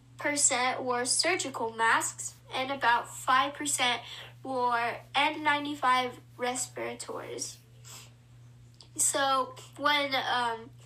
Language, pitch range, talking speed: English, 225-275 Hz, 75 wpm